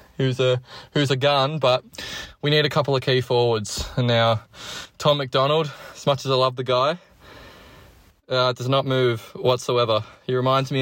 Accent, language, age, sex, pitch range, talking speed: Australian, English, 20-39, male, 120-135 Hz, 175 wpm